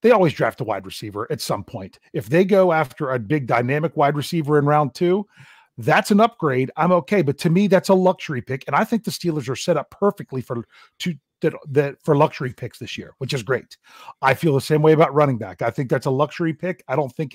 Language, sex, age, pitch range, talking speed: English, male, 40-59, 135-170 Hz, 245 wpm